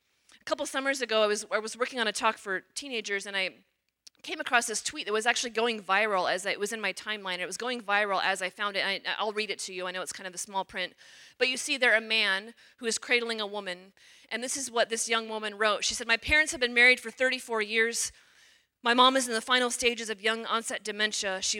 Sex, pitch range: female, 190-225 Hz